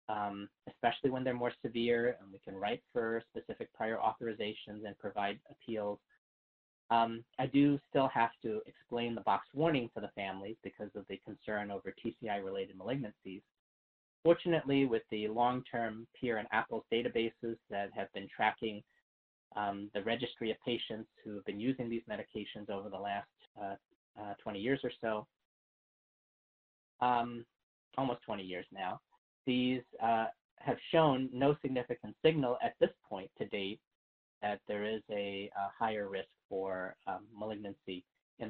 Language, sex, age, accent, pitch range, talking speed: English, male, 30-49, American, 100-120 Hz, 150 wpm